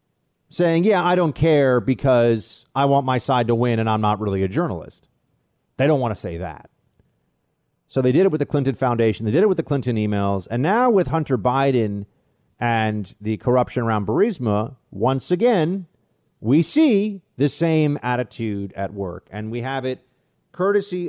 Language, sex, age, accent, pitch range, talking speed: English, male, 40-59, American, 120-170 Hz, 180 wpm